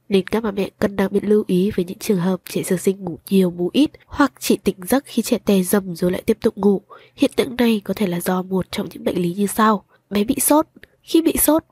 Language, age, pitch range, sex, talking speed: Vietnamese, 20-39, 190-250 Hz, female, 270 wpm